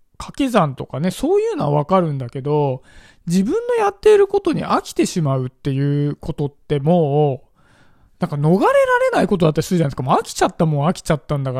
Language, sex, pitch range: Japanese, male, 150-245 Hz